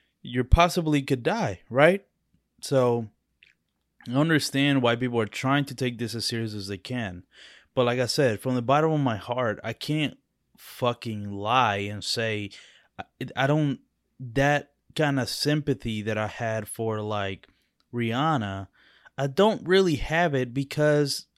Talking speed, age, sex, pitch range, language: 150 wpm, 20-39, male, 110-140 Hz, English